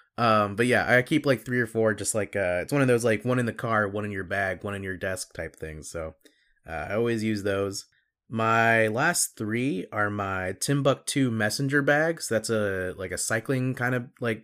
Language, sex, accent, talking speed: English, male, American, 220 wpm